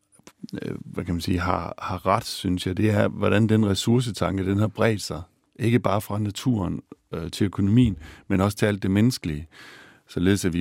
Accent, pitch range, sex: native, 90-105 Hz, male